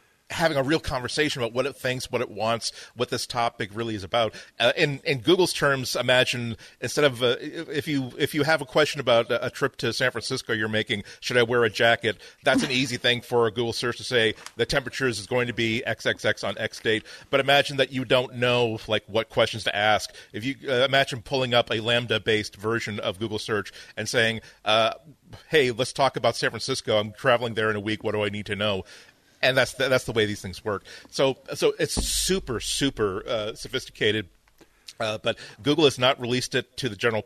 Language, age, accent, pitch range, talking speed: English, 40-59, American, 110-130 Hz, 220 wpm